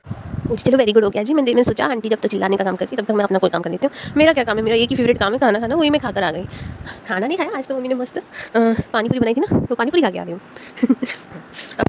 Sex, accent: female, native